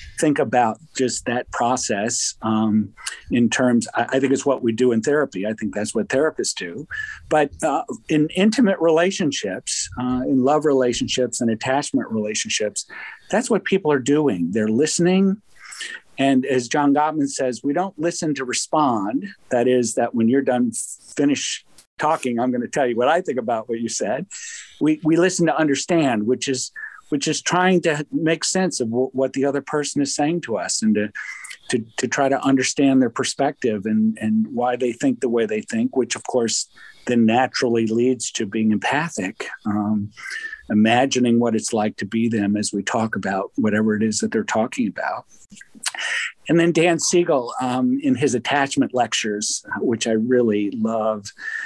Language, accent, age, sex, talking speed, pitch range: English, American, 50-69, male, 175 wpm, 115-160 Hz